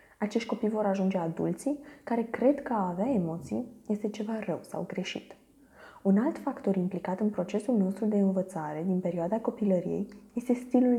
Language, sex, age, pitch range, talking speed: Romanian, female, 20-39, 195-235 Hz, 165 wpm